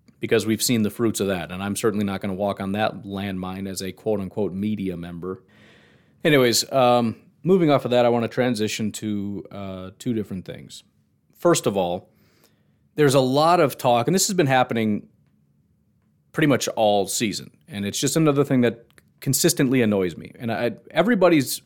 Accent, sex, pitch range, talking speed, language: American, male, 100-130 Hz, 185 wpm, English